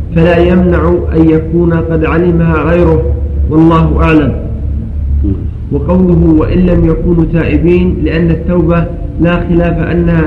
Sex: male